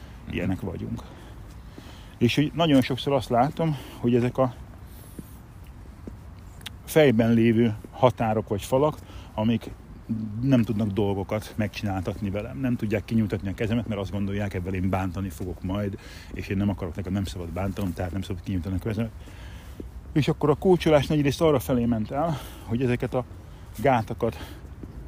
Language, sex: Hungarian, male